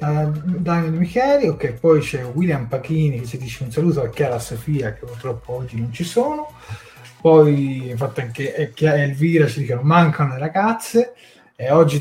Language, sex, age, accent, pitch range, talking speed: Italian, male, 30-49, native, 125-165 Hz, 165 wpm